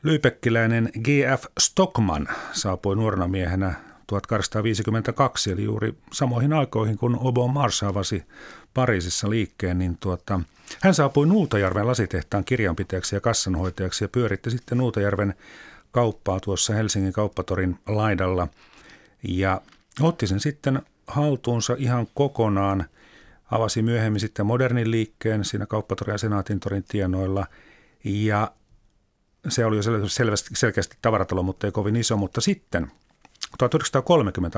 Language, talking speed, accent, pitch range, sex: Finnish, 115 wpm, native, 95-125 Hz, male